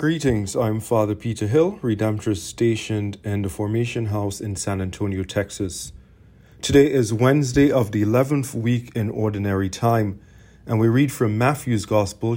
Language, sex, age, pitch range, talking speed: English, male, 40-59, 105-135 Hz, 150 wpm